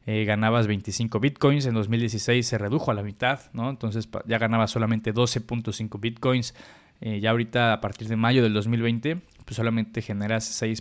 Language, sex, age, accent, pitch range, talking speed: Spanish, male, 20-39, Mexican, 110-130 Hz, 165 wpm